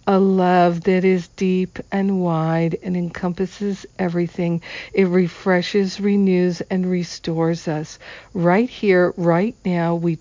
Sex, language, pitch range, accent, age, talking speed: female, English, 165-190 Hz, American, 60-79, 125 wpm